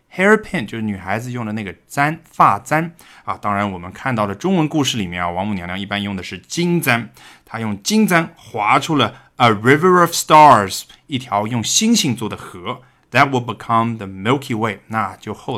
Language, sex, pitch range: Chinese, male, 95-150 Hz